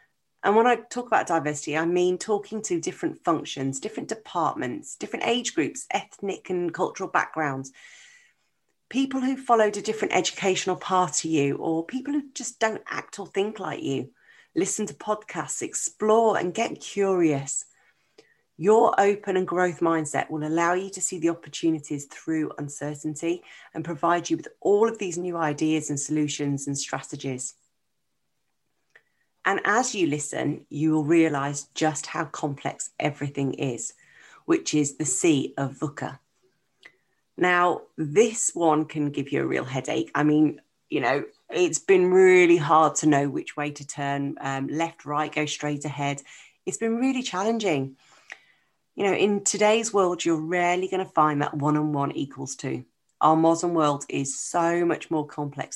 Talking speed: 160 wpm